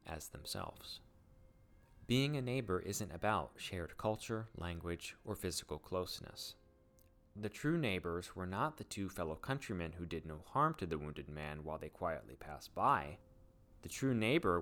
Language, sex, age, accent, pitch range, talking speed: English, male, 30-49, American, 80-110 Hz, 155 wpm